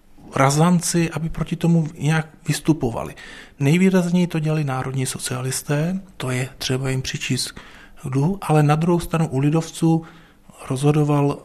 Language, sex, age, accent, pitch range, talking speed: Czech, male, 40-59, native, 130-155 Hz, 125 wpm